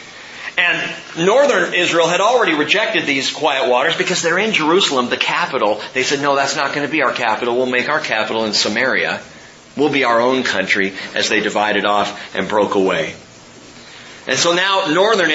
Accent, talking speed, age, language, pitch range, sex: American, 185 wpm, 40-59, English, 110-140 Hz, male